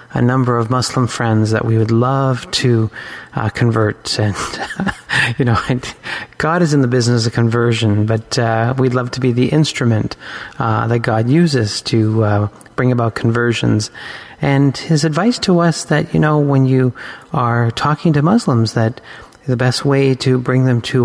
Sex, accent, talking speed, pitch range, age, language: male, American, 175 wpm, 110-135 Hz, 30-49, English